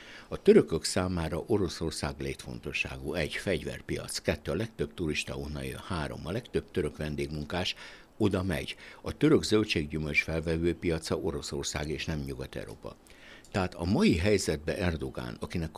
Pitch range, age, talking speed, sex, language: 70-85 Hz, 60-79, 130 wpm, male, Hungarian